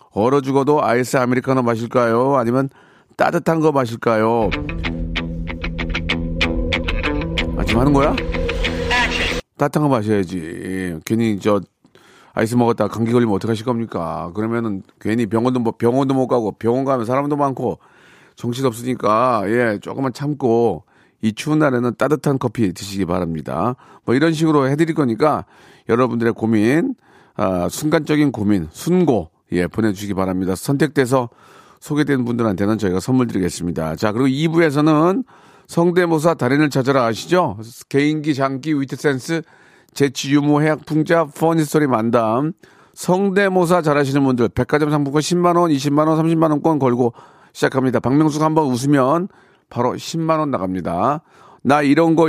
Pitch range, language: 110-150 Hz, Korean